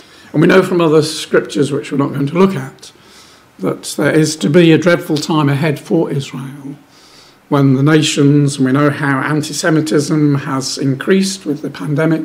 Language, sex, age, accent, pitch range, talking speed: English, male, 50-69, British, 135-155 Hz, 180 wpm